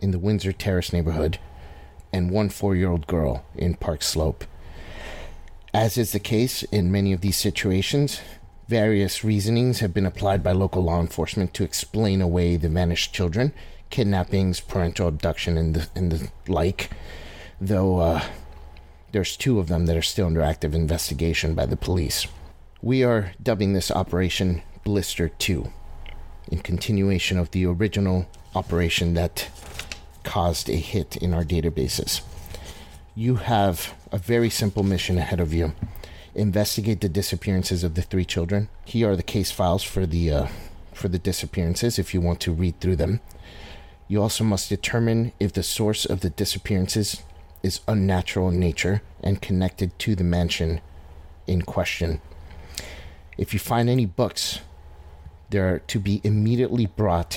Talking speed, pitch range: 150 wpm, 80-100 Hz